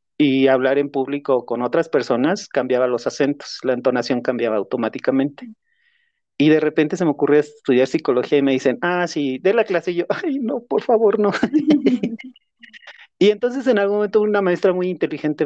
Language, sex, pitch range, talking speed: Spanish, male, 140-185 Hz, 180 wpm